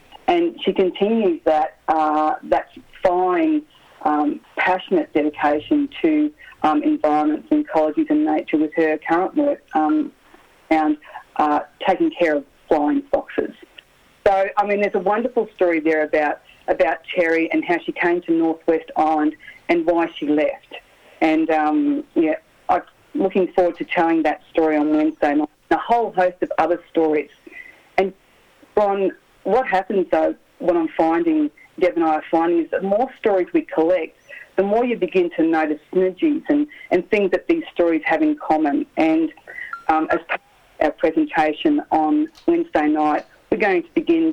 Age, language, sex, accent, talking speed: 40-59, English, female, Australian, 160 wpm